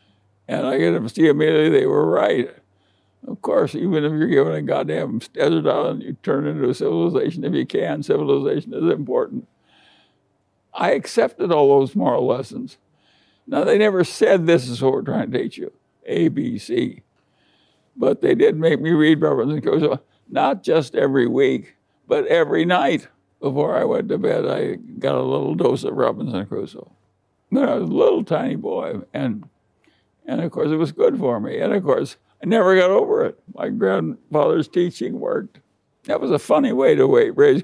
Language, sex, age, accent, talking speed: English, male, 60-79, American, 180 wpm